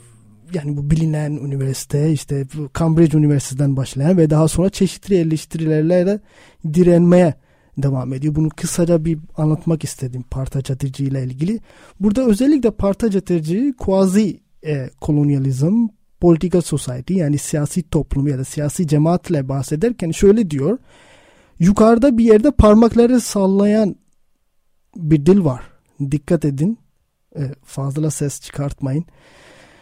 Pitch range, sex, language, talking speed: 145-190 Hz, male, Turkish, 120 wpm